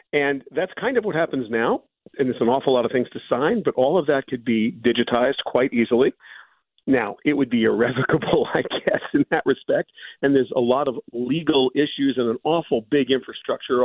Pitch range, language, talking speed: 120-160 Hz, English, 205 wpm